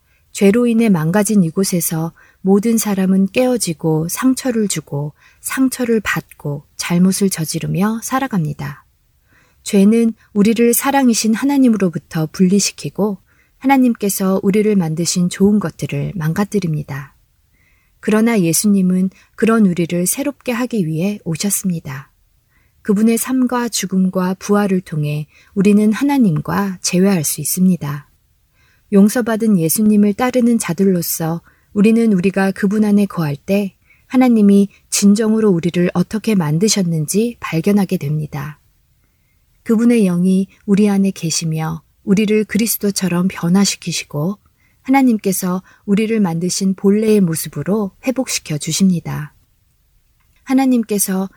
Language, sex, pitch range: Korean, female, 165-215 Hz